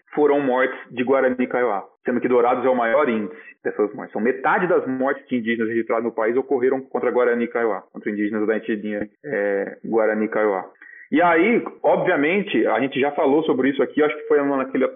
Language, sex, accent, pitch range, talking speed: Portuguese, male, Brazilian, 115-150 Hz, 195 wpm